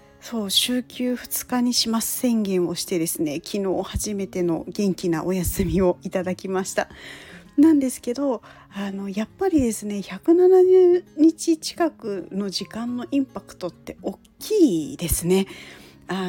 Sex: female